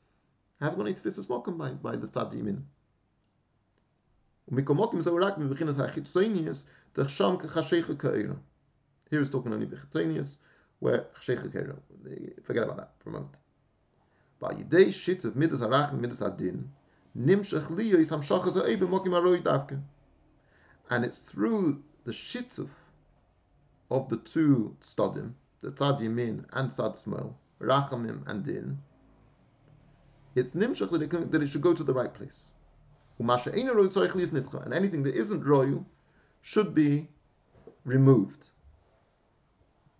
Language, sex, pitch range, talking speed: English, male, 110-160 Hz, 85 wpm